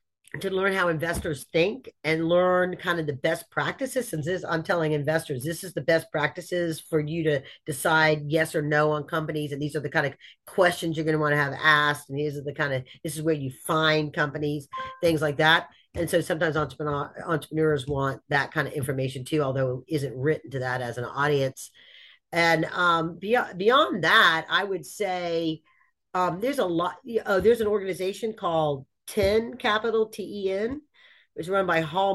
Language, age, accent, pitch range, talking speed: English, 40-59, American, 150-190 Hz, 190 wpm